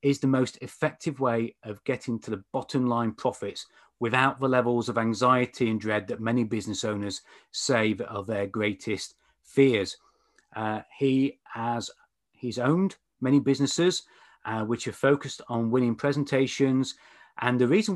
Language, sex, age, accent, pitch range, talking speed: English, male, 30-49, British, 110-140 Hz, 155 wpm